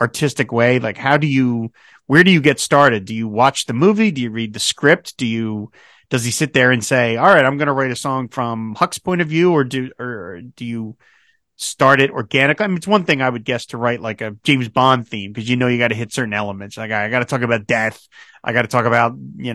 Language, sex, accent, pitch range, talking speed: English, male, American, 120-150 Hz, 265 wpm